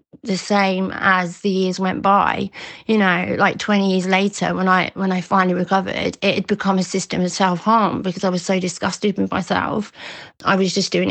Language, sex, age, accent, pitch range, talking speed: English, female, 30-49, British, 190-220 Hz, 200 wpm